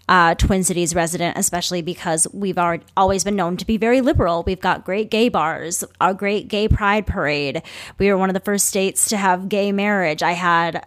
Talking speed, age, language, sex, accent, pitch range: 210 wpm, 20-39, English, female, American, 170-205 Hz